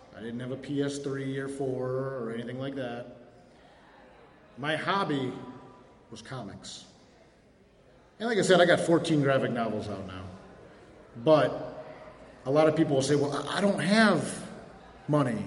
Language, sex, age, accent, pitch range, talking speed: English, male, 40-59, American, 135-190 Hz, 145 wpm